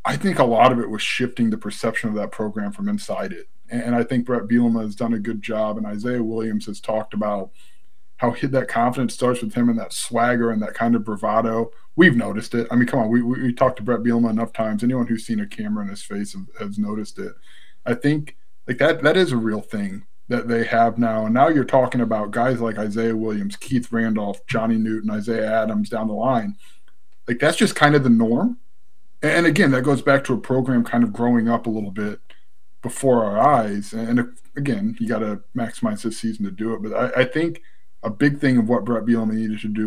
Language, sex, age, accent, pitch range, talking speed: English, male, 20-39, American, 110-140 Hz, 235 wpm